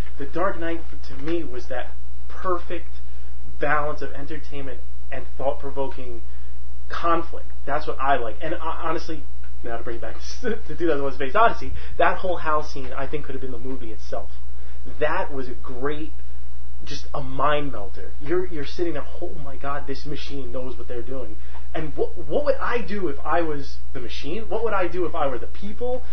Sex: male